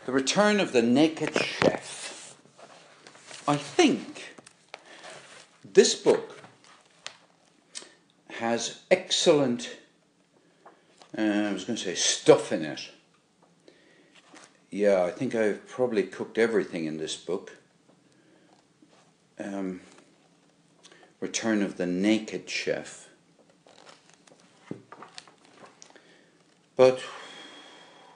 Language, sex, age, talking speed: English, male, 60-79, 80 wpm